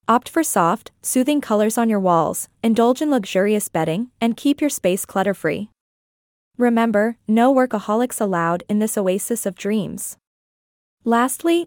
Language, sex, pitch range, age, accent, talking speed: English, female, 195-250 Hz, 20-39, American, 140 wpm